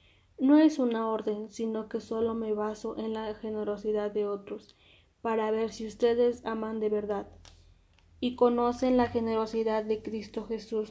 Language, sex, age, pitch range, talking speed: Spanish, female, 20-39, 215-235 Hz, 155 wpm